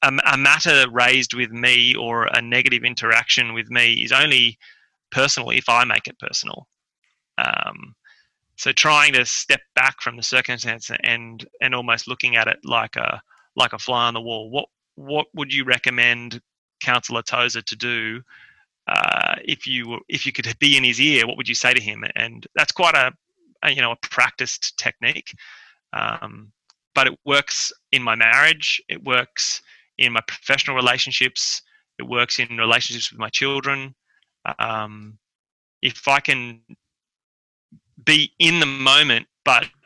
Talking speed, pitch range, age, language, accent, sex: 160 wpm, 115-135 Hz, 30-49, English, Australian, male